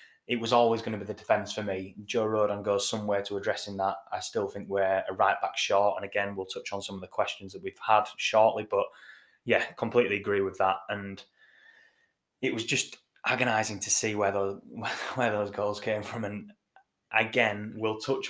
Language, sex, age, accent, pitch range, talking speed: English, male, 10-29, British, 100-120 Hz, 200 wpm